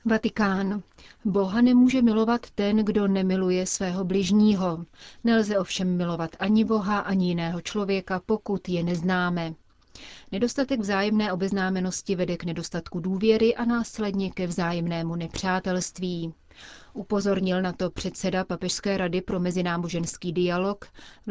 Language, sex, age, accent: Czech, female, 30-49, native